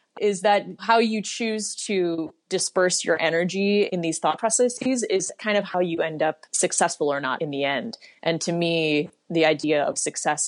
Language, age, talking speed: English, 20-39, 190 wpm